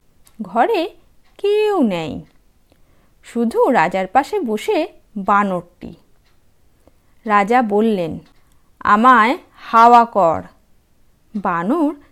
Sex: female